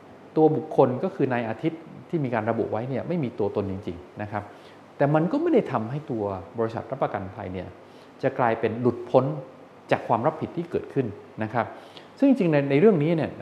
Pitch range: 110-150 Hz